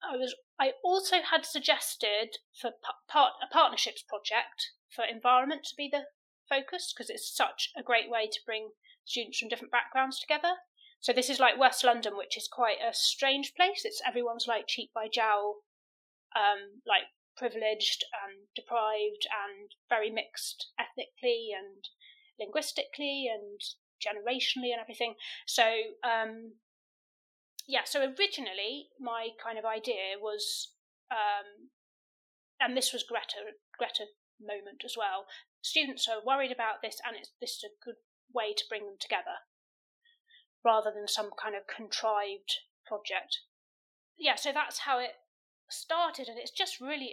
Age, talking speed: 30-49, 145 wpm